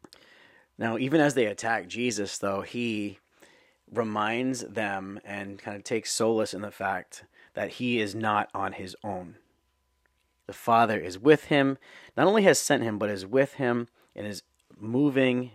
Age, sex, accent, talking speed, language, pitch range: 30-49, male, American, 160 wpm, English, 100-125 Hz